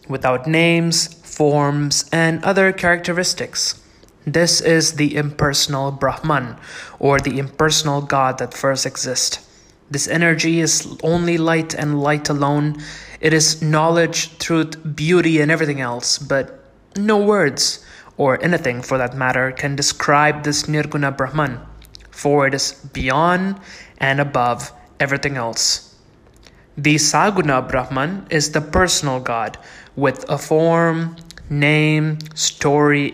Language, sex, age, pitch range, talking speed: English, male, 20-39, 135-160 Hz, 120 wpm